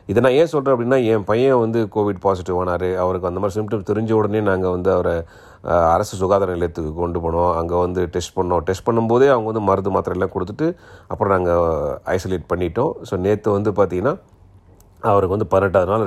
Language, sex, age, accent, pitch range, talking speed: Tamil, male, 30-49, native, 90-115 Hz, 180 wpm